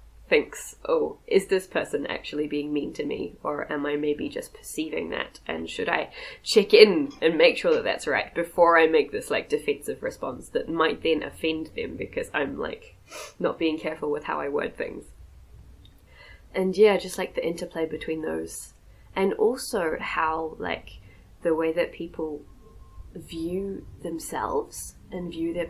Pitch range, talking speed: 145-245 Hz, 170 wpm